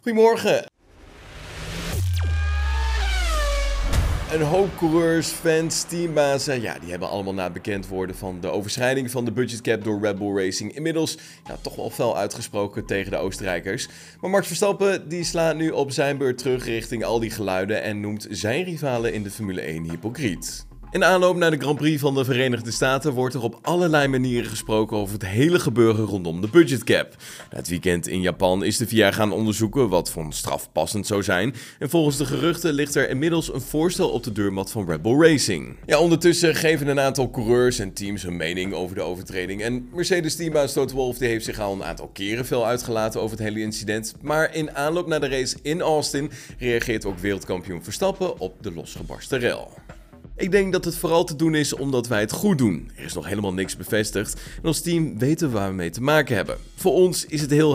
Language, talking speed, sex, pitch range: Dutch, 195 wpm, male, 100-155 Hz